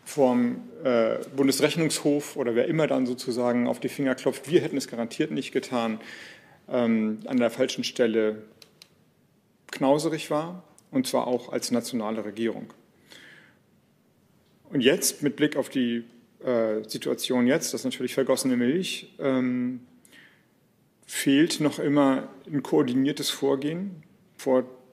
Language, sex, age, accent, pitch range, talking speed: German, male, 40-59, German, 125-150 Hz, 125 wpm